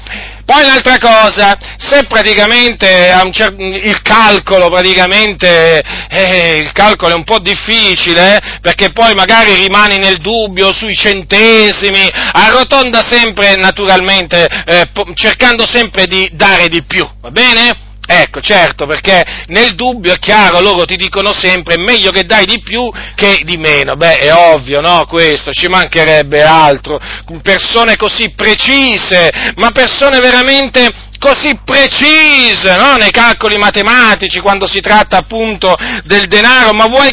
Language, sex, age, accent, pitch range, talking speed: Italian, male, 40-59, native, 195-265 Hz, 130 wpm